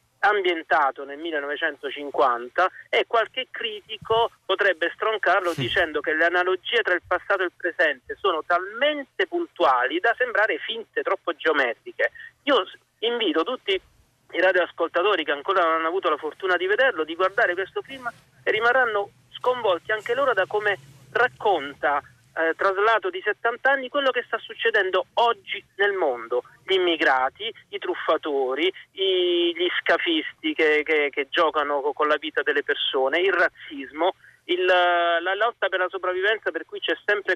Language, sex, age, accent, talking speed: Italian, male, 40-59, native, 145 wpm